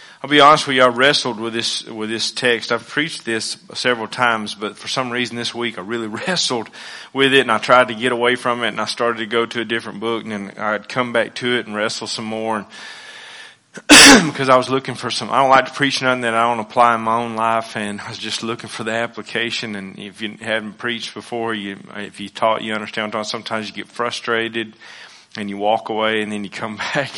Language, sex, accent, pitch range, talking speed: English, male, American, 110-125 Hz, 240 wpm